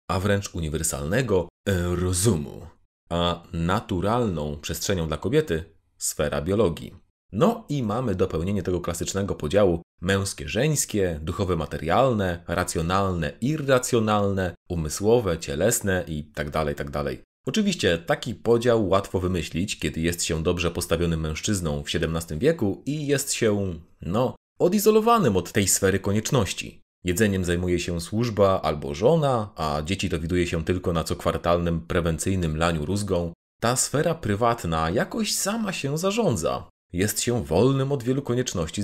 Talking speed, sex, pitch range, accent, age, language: 120 wpm, male, 85-115 Hz, native, 30-49, Polish